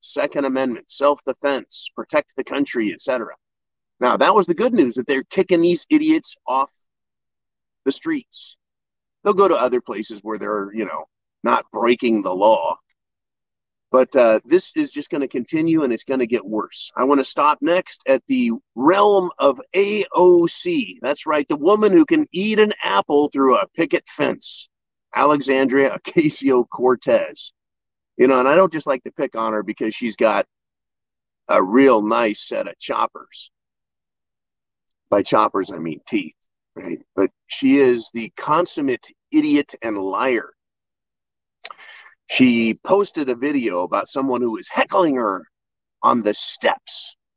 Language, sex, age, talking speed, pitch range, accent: English, male, 50-69, 155 wpm, 125-205 Hz, American